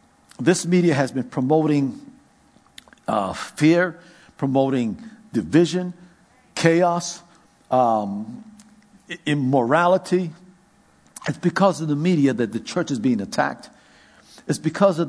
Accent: American